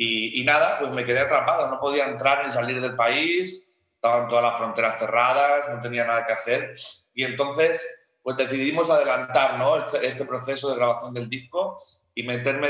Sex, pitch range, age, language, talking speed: male, 115-140 Hz, 30-49, Spanish, 185 wpm